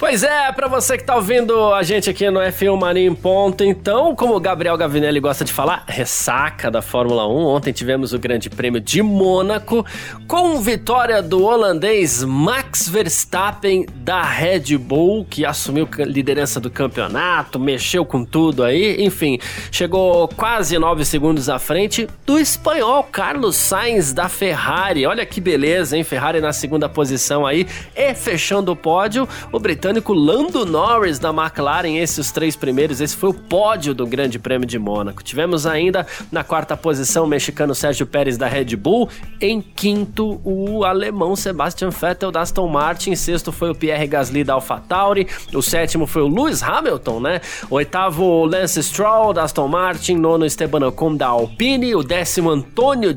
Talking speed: 165 wpm